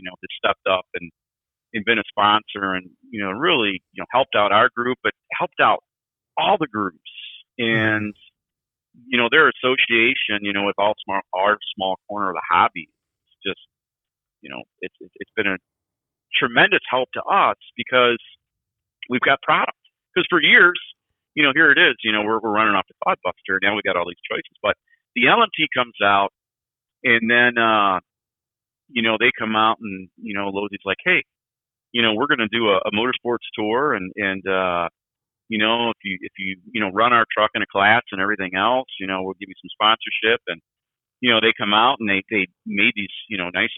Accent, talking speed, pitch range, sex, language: American, 210 wpm, 95-120 Hz, male, English